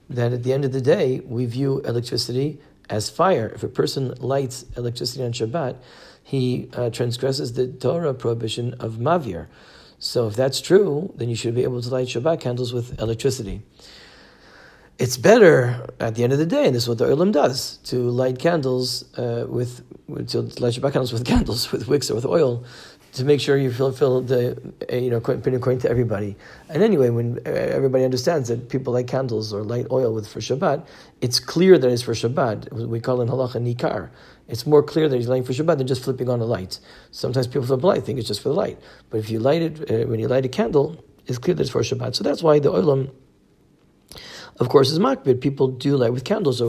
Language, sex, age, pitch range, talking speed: English, male, 40-59, 120-135 Hz, 215 wpm